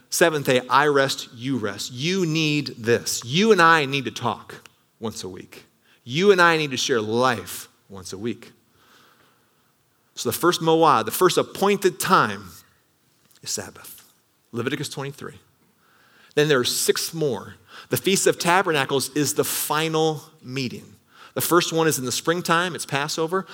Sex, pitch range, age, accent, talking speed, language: male, 120-160 Hz, 30-49, American, 160 wpm, English